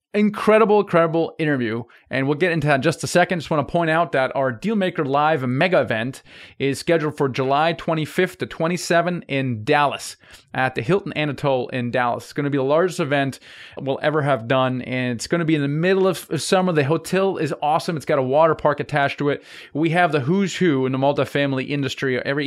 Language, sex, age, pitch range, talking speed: English, male, 30-49, 135-170 Hz, 220 wpm